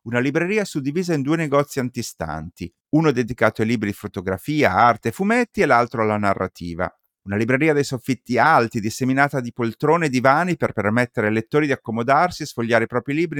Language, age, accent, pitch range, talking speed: Italian, 30-49, native, 105-140 Hz, 185 wpm